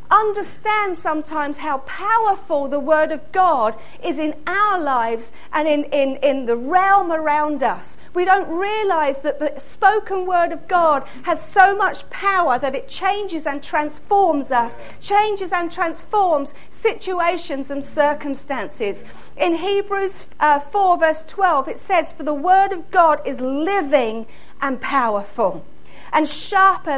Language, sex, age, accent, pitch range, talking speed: English, female, 40-59, British, 280-375 Hz, 140 wpm